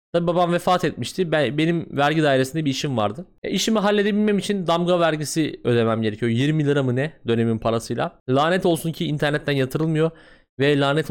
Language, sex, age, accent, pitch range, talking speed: Turkish, male, 30-49, native, 135-185 Hz, 160 wpm